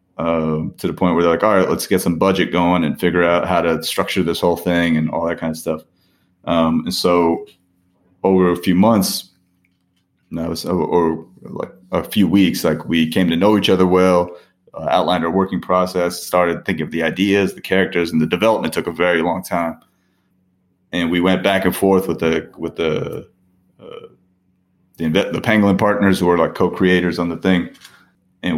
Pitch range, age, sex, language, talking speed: 85-95 Hz, 30-49, male, English, 185 wpm